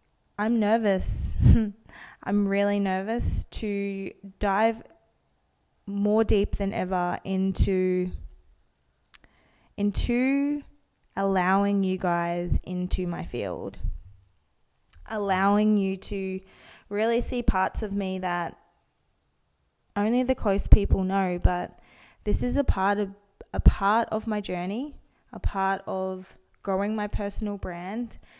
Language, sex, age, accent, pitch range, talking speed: English, female, 20-39, Australian, 180-210 Hz, 110 wpm